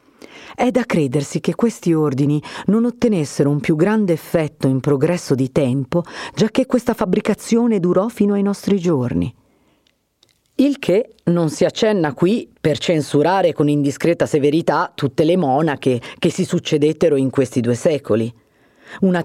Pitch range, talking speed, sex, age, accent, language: 135-185 Hz, 145 wpm, female, 40-59, native, Italian